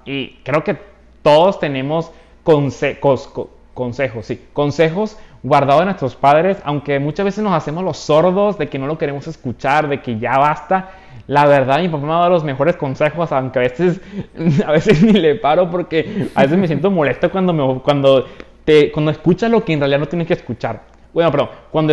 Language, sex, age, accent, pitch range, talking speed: Spanish, male, 20-39, Mexican, 130-170 Hz, 195 wpm